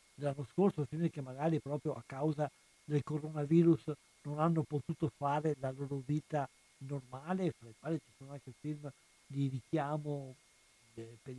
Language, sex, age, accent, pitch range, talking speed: Italian, male, 60-79, native, 130-155 Hz, 150 wpm